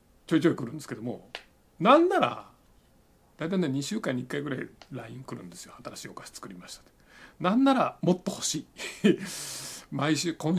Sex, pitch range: male, 120-170 Hz